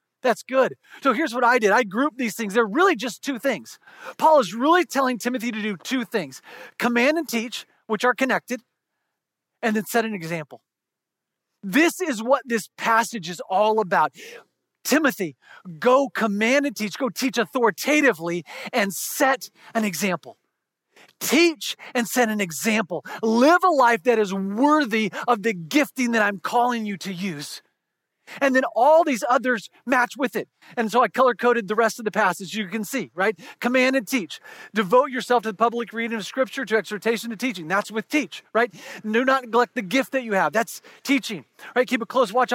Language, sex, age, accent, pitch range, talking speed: English, male, 40-59, American, 215-260 Hz, 185 wpm